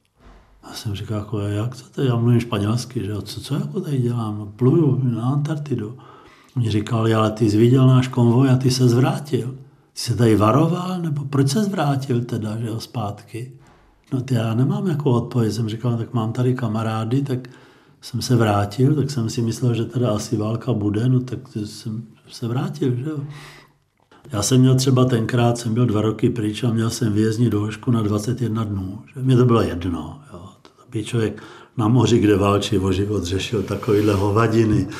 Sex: male